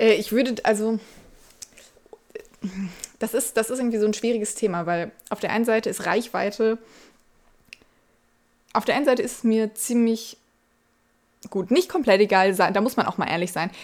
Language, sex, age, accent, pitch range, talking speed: German, female, 20-39, German, 185-220 Hz, 165 wpm